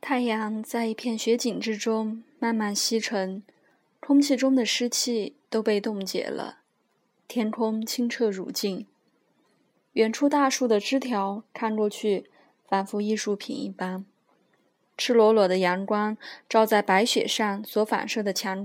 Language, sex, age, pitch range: Chinese, female, 20-39, 205-245 Hz